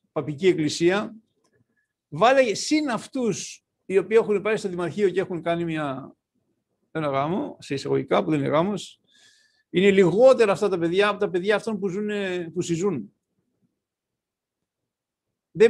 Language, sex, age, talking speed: Greek, male, 60-79, 135 wpm